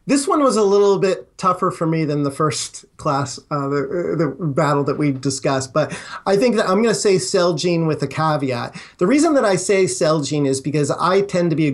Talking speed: 240 wpm